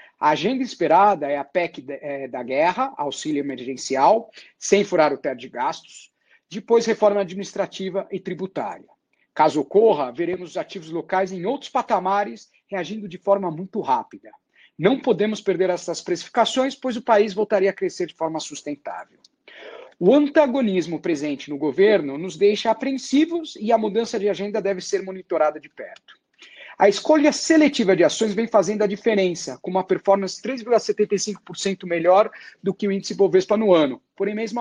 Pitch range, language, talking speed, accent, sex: 175-225 Hz, English, 155 wpm, Brazilian, male